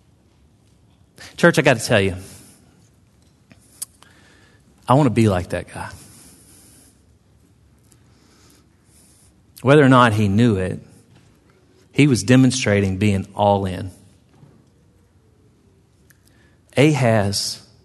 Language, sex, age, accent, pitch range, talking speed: English, male, 40-59, American, 95-125 Hz, 85 wpm